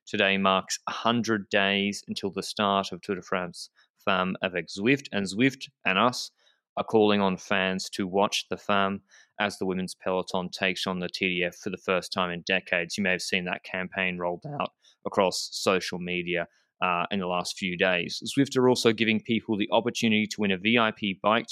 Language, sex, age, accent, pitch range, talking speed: English, male, 20-39, Australian, 95-115 Hz, 190 wpm